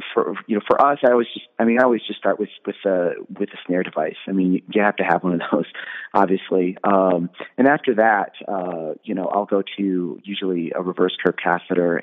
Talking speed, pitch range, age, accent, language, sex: 230 wpm, 90-110 Hz, 30-49, American, English, male